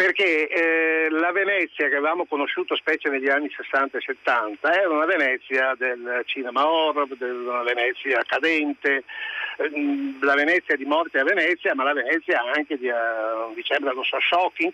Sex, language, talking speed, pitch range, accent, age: male, Italian, 165 wpm, 140-205 Hz, native, 60-79